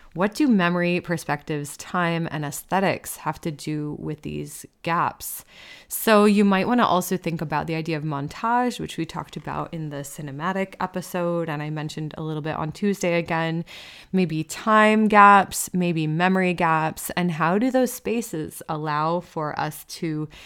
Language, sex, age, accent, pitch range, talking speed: English, female, 20-39, American, 155-185 Hz, 165 wpm